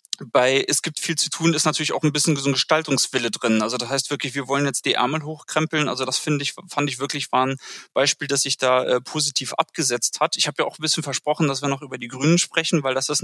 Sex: male